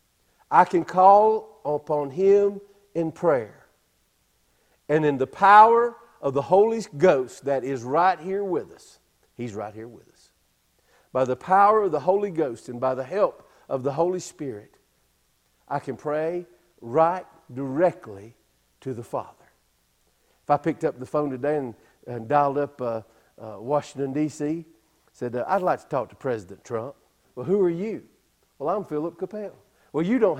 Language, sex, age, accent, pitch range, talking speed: English, male, 50-69, American, 115-175 Hz, 165 wpm